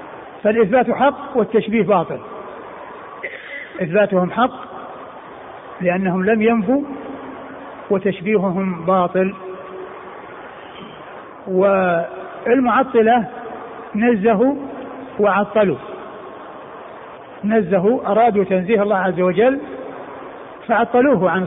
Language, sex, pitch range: Arabic, male, 190-235 Hz